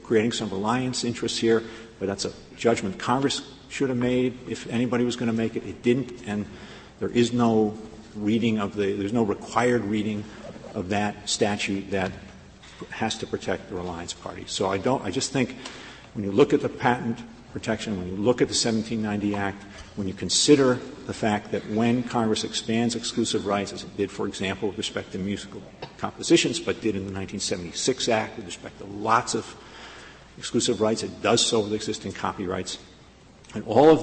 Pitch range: 100-115 Hz